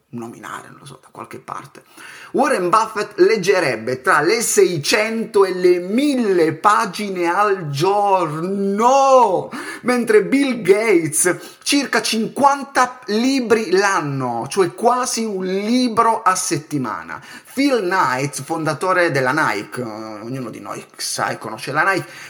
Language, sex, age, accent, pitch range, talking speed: Italian, male, 30-49, native, 130-200 Hz, 120 wpm